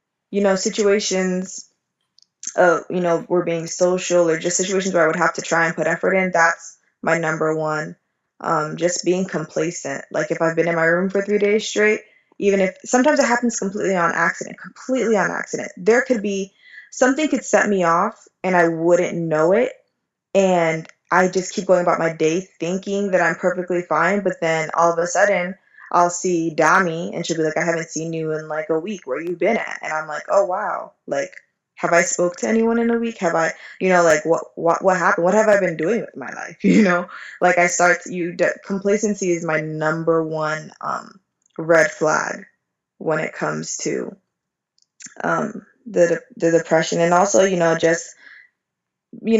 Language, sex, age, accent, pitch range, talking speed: English, female, 20-39, American, 165-195 Hz, 195 wpm